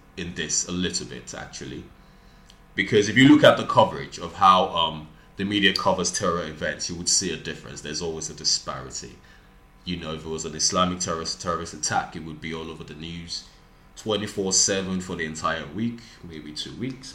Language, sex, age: English, male, 20-39